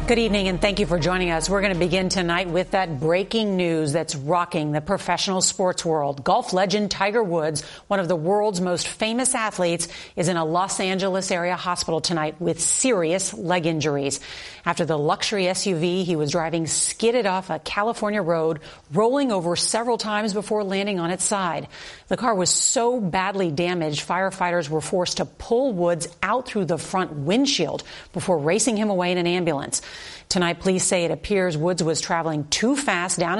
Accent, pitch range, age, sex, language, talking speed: American, 170-205 Hz, 40-59, female, English, 185 wpm